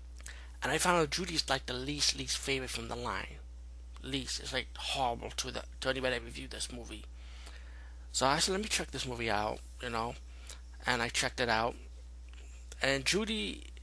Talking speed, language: 180 wpm, English